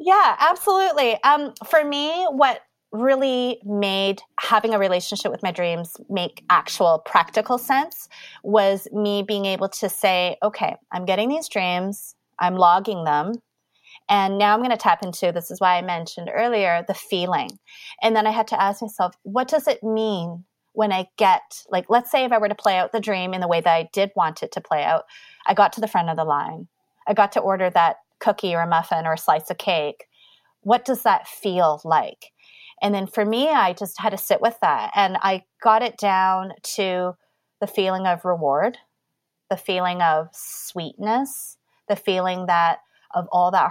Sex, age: female, 30-49